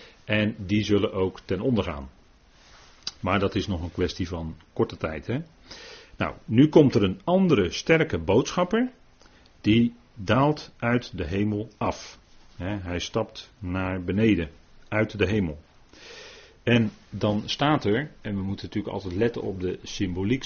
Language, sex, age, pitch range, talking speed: Dutch, male, 40-59, 95-120 Hz, 150 wpm